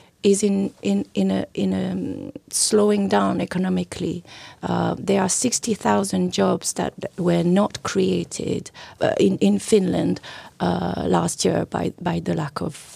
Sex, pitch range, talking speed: female, 190-250 Hz, 155 wpm